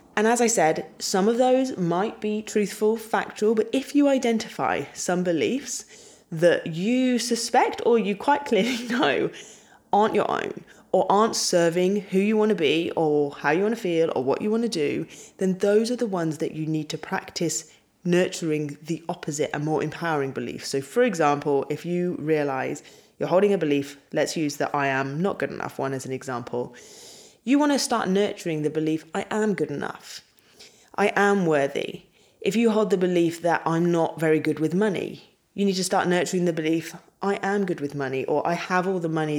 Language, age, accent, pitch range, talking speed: English, 20-39, British, 155-220 Hz, 200 wpm